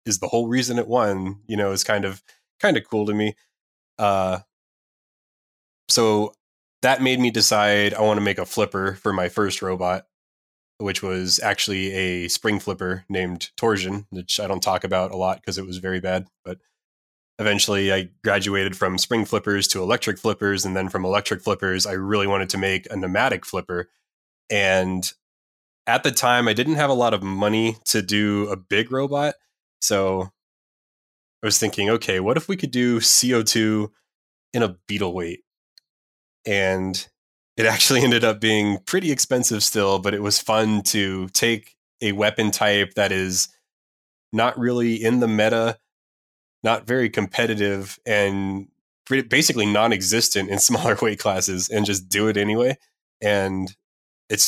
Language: English